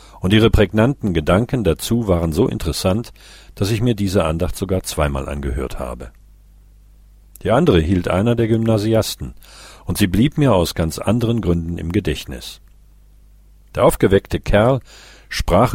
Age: 50-69